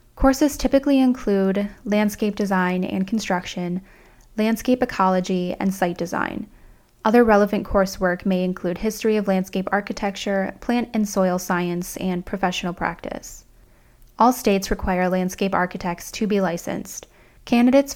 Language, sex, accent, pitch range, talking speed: English, female, American, 180-220 Hz, 125 wpm